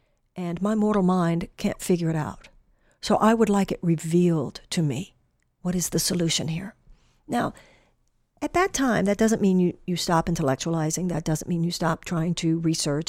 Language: English